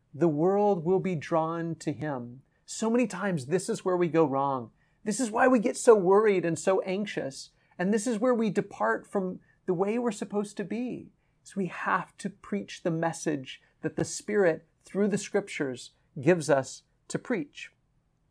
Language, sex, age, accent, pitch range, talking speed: English, male, 40-59, American, 150-190 Hz, 185 wpm